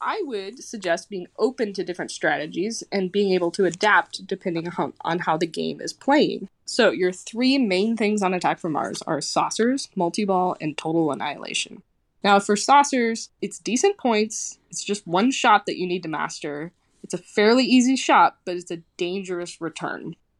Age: 20-39